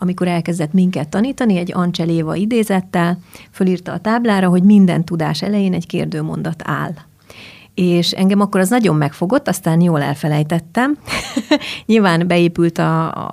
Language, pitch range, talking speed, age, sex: Hungarian, 165-195 Hz, 135 wpm, 30-49, female